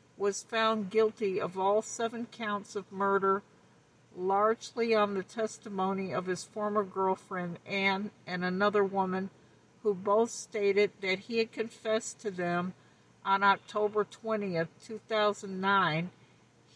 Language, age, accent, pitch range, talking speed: English, 60-79, American, 185-215 Hz, 130 wpm